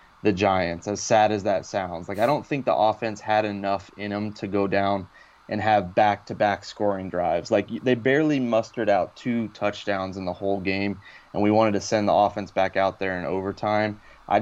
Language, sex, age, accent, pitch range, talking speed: English, male, 20-39, American, 100-110 Hz, 205 wpm